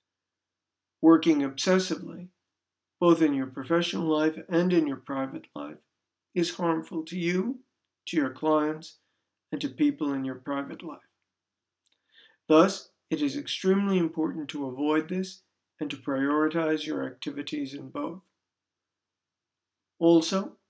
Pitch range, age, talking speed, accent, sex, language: 140-180 Hz, 60-79, 120 wpm, American, male, English